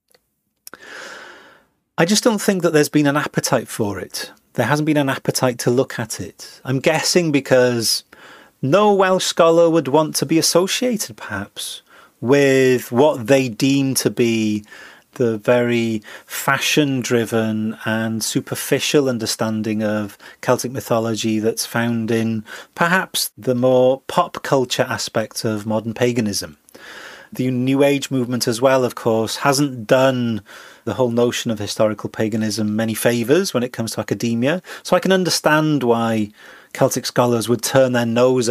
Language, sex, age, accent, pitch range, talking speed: English, male, 30-49, British, 110-140 Hz, 145 wpm